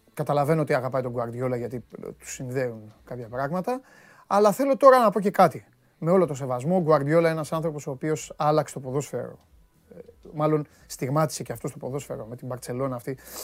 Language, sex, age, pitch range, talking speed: Greek, male, 30-49, 110-150 Hz, 175 wpm